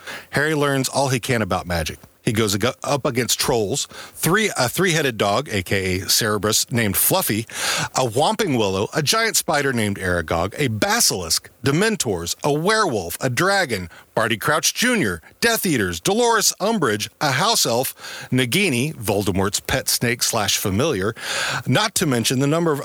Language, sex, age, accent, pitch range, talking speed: English, male, 40-59, American, 100-145 Hz, 145 wpm